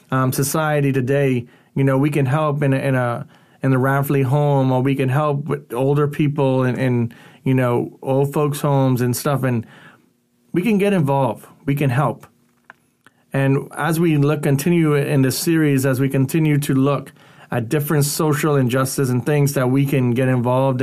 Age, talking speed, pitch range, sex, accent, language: 30-49, 185 wpm, 130-150 Hz, male, American, English